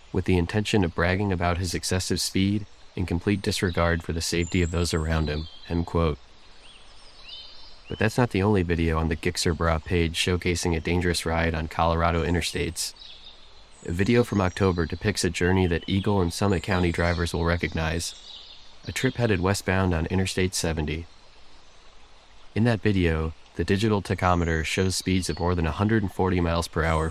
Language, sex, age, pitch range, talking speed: English, male, 20-39, 85-95 Hz, 165 wpm